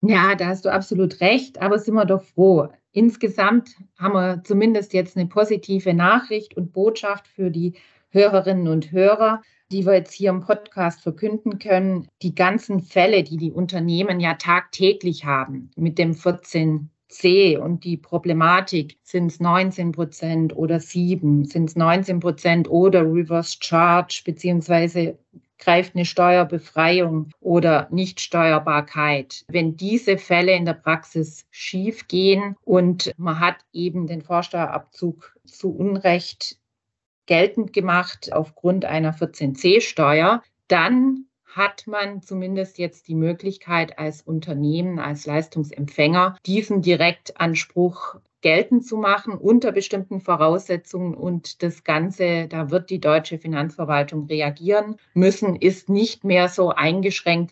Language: German